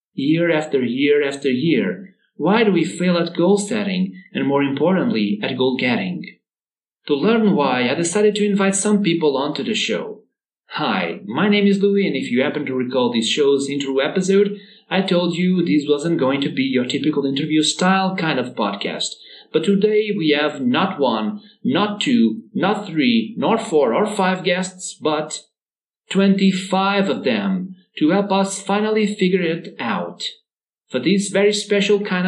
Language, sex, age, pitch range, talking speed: English, male, 40-59, 150-205 Hz, 165 wpm